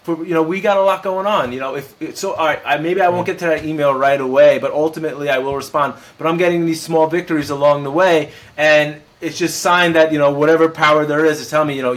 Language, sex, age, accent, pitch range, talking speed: English, male, 20-39, American, 135-160 Hz, 280 wpm